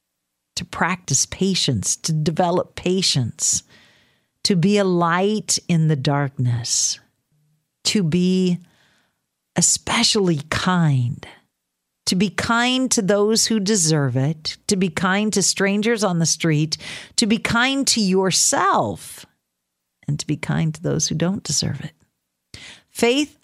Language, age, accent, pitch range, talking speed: English, 50-69, American, 135-185 Hz, 125 wpm